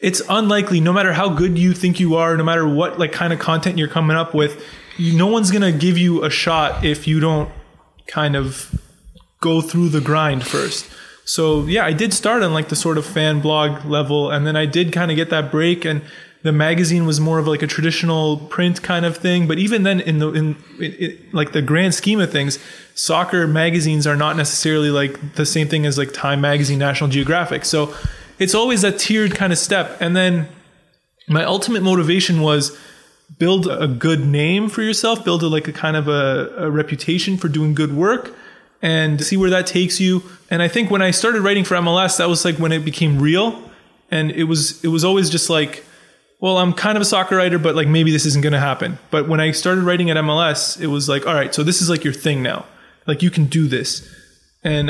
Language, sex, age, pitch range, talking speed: English, male, 20-39, 150-180 Hz, 225 wpm